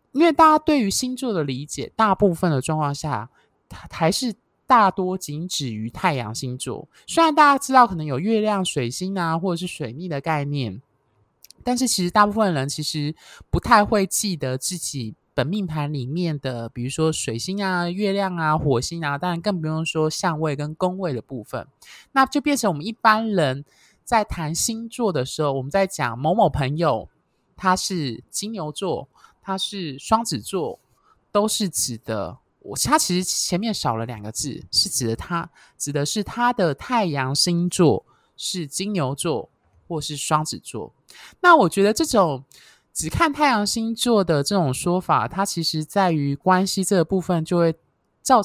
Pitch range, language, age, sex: 145-200 Hz, Chinese, 20-39, male